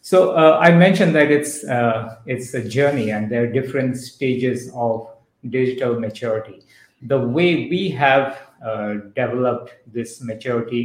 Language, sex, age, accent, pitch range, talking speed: English, male, 50-69, Indian, 120-140 Hz, 145 wpm